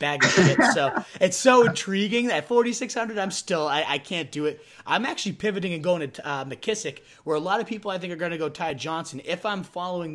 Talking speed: 235 wpm